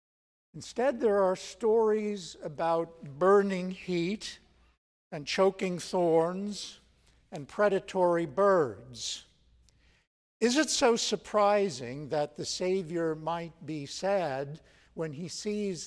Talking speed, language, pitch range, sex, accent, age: 100 wpm, English, 135-185 Hz, male, American, 60-79